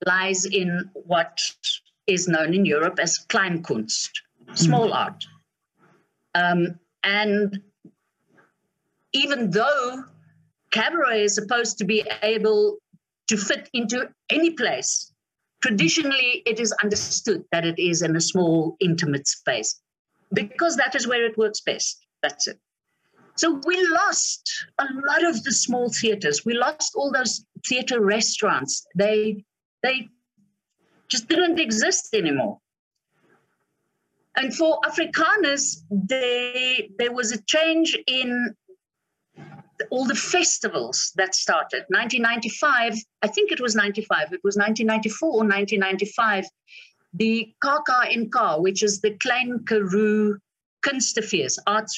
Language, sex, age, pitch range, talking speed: English, female, 50-69, 200-260 Hz, 120 wpm